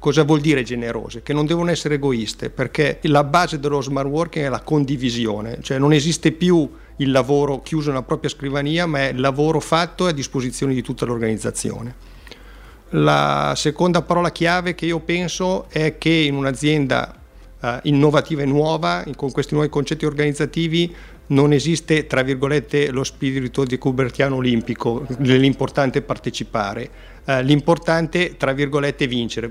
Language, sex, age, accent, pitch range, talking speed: Italian, male, 50-69, native, 125-150 Hz, 150 wpm